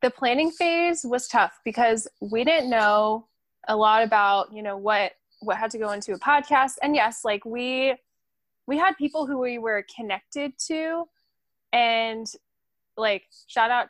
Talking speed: 165 wpm